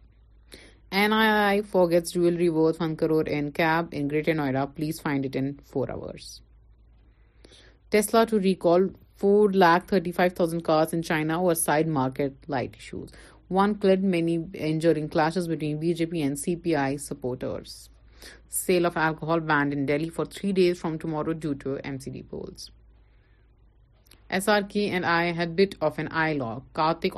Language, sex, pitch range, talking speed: Urdu, female, 140-180 Hz, 145 wpm